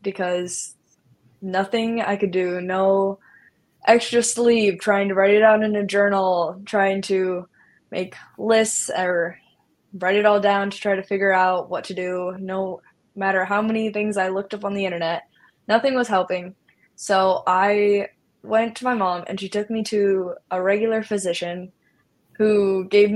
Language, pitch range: English, 185-205 Hz